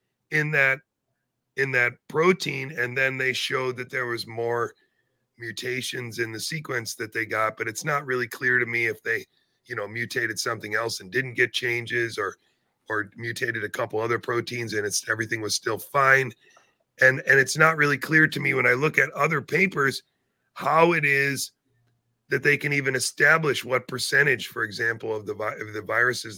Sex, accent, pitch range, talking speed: male, American, 120-145 Hz, 185 wpm